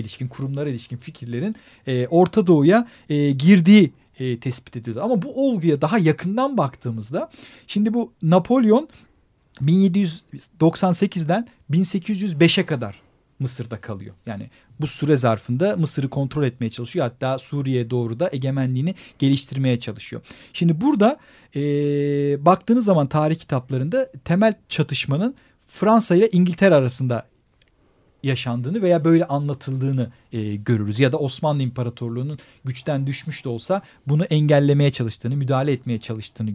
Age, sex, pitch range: 40-59, male, 130-185 Hz